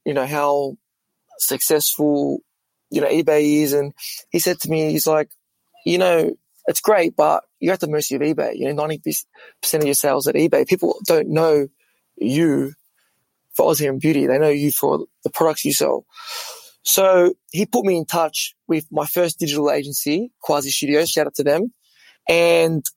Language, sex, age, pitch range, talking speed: English, male, 20-39, 145-175 Hz, 180 wpm